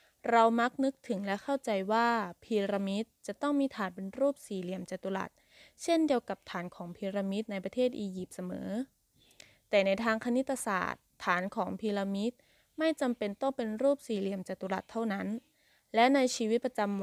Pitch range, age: 185-240 Hz, 20-39